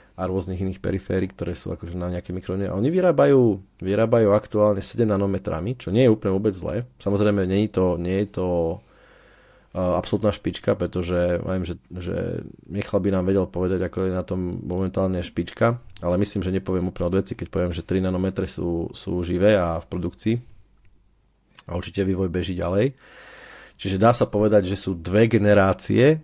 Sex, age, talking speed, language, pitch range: male, 30-49, 165 wpm, Slovak, 90-105 Hz